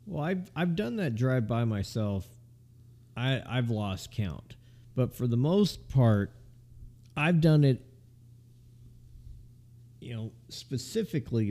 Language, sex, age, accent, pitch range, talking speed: English, male, 40-59, American, 100-120 Hz, 125 wpm